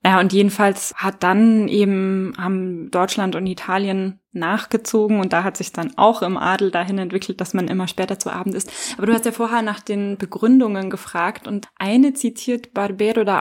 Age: 20-39